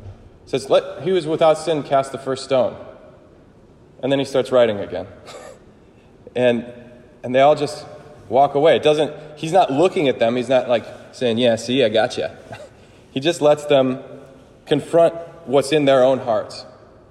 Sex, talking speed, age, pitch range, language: male, 170 wpm, 30-49, 120-145 Hz, English